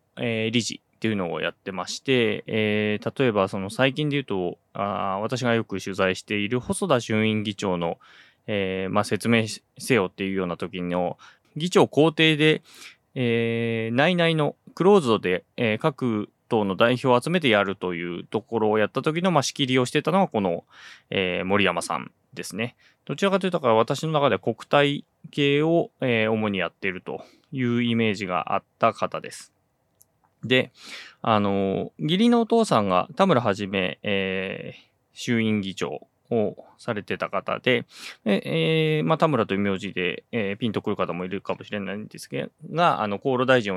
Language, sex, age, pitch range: Japanese, male, 20-39, 100-150 Hz